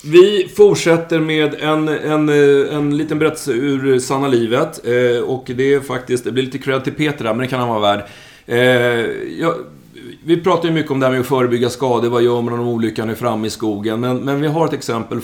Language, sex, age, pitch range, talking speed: Swedish, male, 30-49, 110-135 Hz, 225 wpm